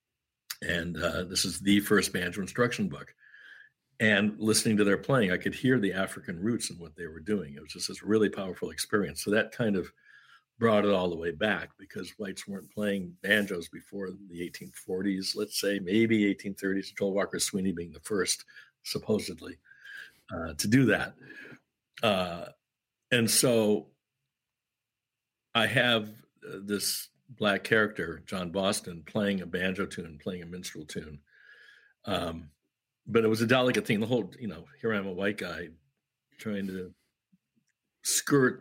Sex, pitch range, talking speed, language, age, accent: male, 90-110 Hz, 160 wpm, English, 60-79, American